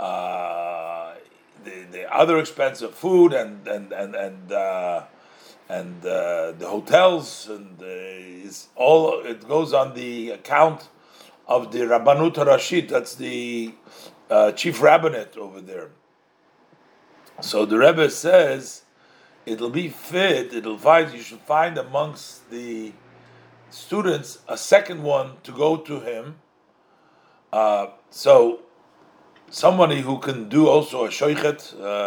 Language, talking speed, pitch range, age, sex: English, 125 wpm, 110-160 Hz, 50-69, male